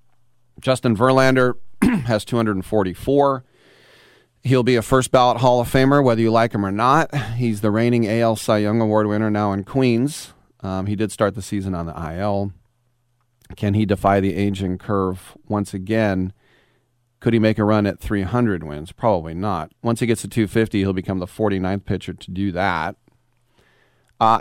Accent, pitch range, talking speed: American, 100-125 Hz, 170 wpm